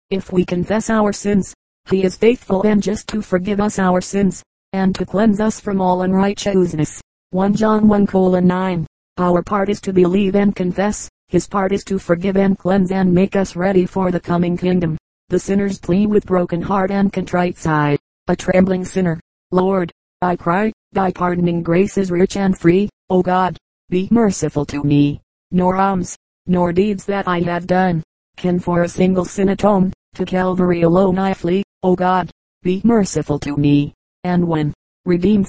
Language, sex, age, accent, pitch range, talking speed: English, female, 40-59, American, 175-195 Hz, 175 wpm